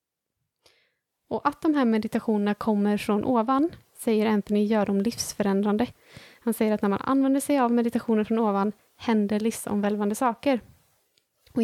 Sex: female